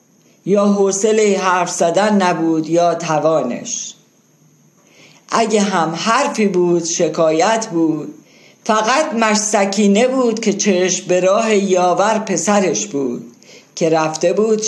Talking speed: 105 wpm